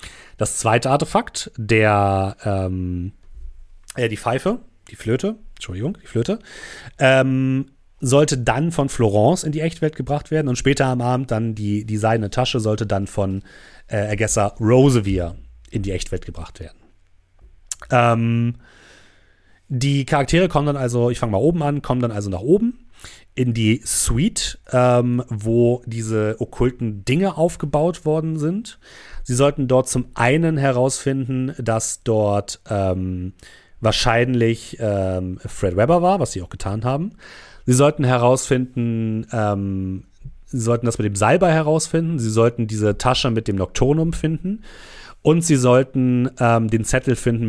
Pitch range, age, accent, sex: 105-135 Hz, 30-49, German, male